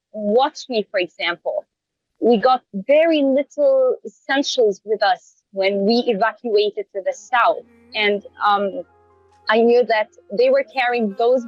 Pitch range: 240-315 Hz